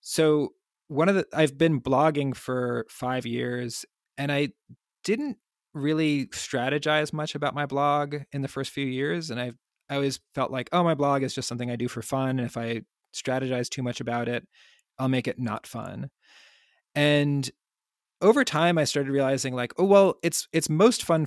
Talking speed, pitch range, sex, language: 185 wpm, 120-145 Hz, male, English